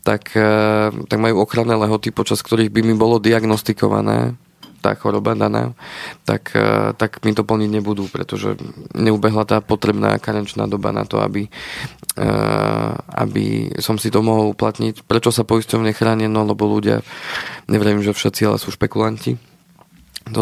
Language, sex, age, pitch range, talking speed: Slovak, male, 20-39, 105-115 Hz, 145 wpm